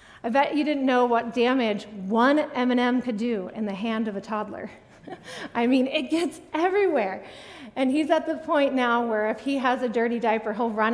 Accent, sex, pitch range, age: American, female, 220-285 Hz, 30-49